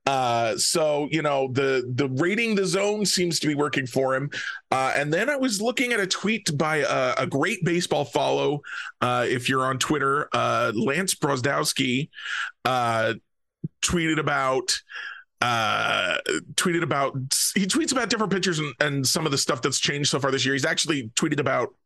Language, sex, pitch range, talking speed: English, male, 140-190 Hz, 175 wpm